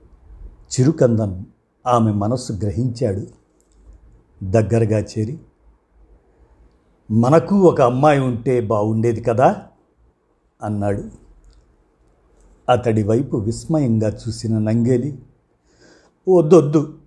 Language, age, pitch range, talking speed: Telugu, 50-69, 100-125 Hz, 65 wpm